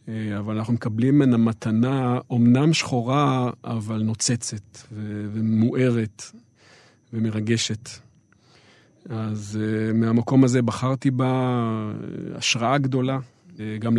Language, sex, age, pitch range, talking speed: Hebrew, male, 40-59, 110-130 Hz, 80 wpm